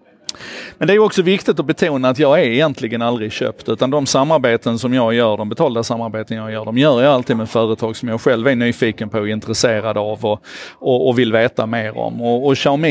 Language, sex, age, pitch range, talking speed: Swedish, male, 30-49, 115-140 Hz, 230 wpm